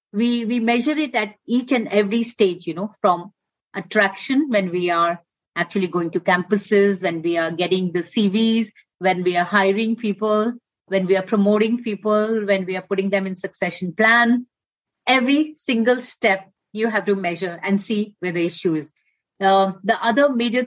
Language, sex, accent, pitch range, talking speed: English, female, Indian, 190-235 Hz, 175 wpm